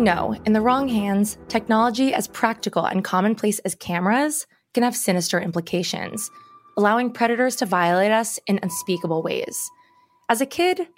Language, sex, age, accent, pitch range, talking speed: English, female, 20-39, American, 180-250 Hz, 150 wpm